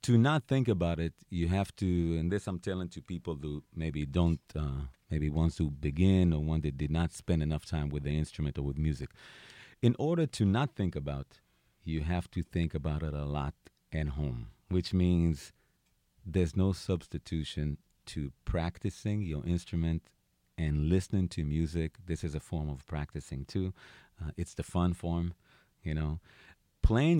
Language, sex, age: English, male, 40-59